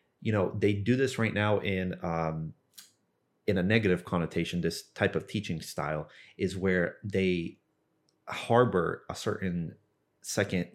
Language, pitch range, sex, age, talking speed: English, 90-105 Hz, male, 30-49, 140 wpm